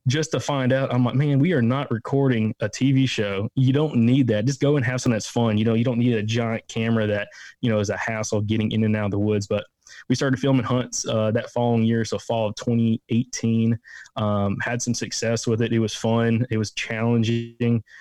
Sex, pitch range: male, 110-125 Hz